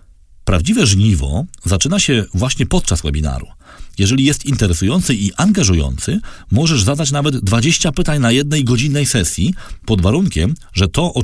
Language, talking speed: Polish, 140 wpm